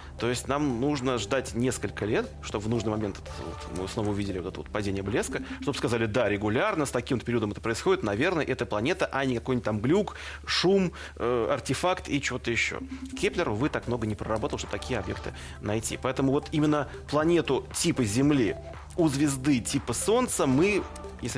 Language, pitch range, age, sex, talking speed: Russian, 100-135 Hz, 30-49, male, 180 wpm